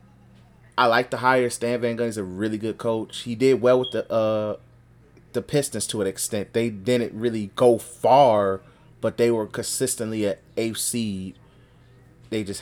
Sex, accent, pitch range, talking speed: male, American, 100-120 Hz, 175 wpm